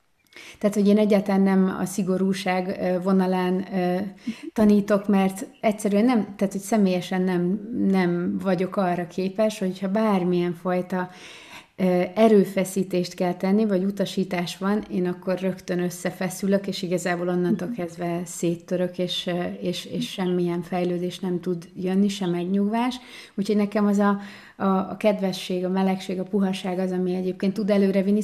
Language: Hungarian